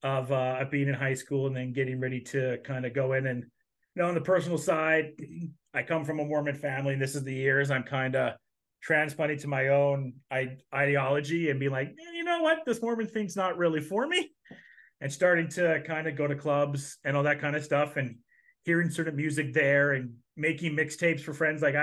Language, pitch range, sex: English, 135-165 Hz, male